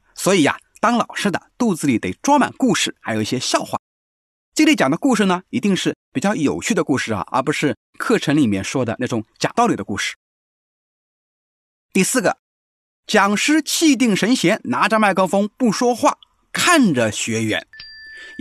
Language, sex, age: Chinese, male, 30-49